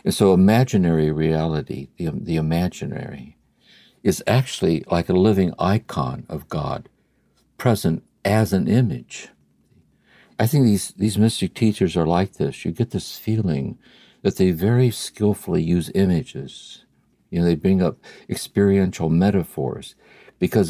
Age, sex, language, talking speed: 60-79, male, English, 135 wpm